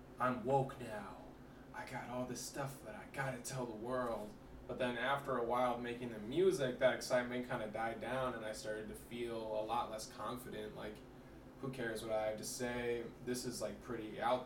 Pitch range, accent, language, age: 120-130 Hz, American, English, 20-39